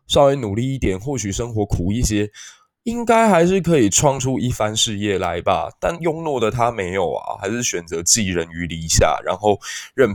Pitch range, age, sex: 95-125 Hz, 20-39, male